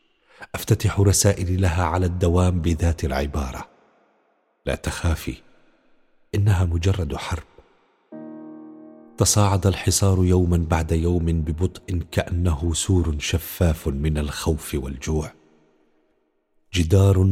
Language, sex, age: Arabic, male, 50-69